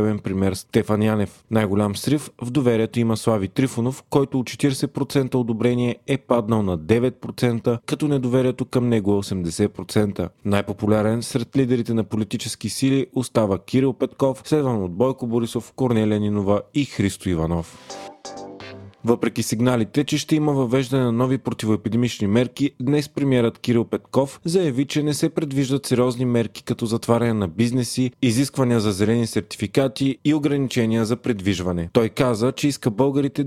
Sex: male